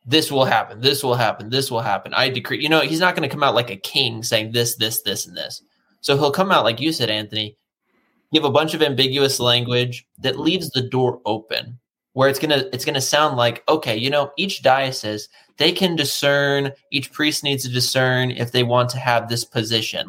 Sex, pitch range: male, 115-140 Hz